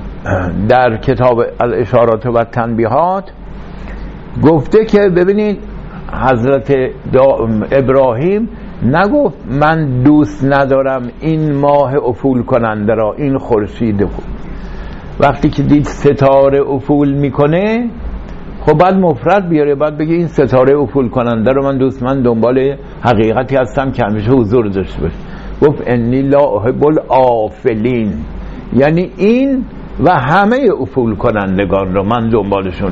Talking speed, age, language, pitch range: 120 wpm, 60-79, English, 125-170 Hz